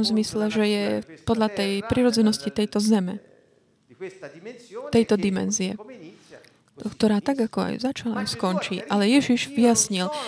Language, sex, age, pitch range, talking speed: Slovak, female, 40-59, 210-245 Hz, 115 wpm